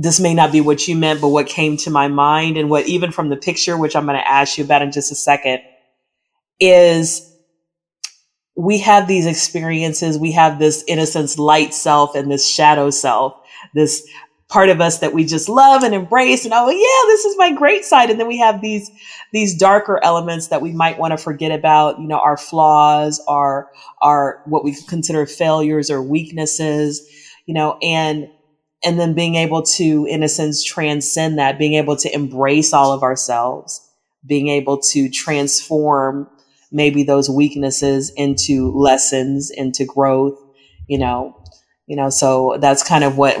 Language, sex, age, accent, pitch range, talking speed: English, female, 30-49, American, 145-170 Hz, 180 wpm